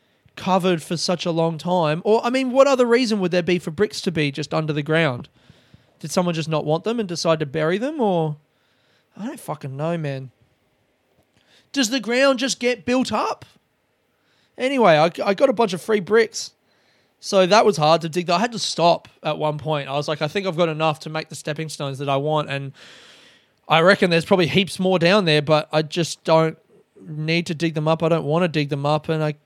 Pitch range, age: 150-195 Hz, 20-39